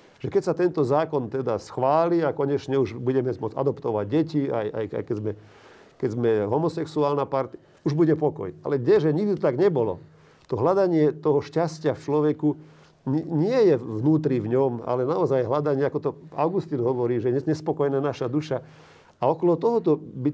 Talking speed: 170 wpm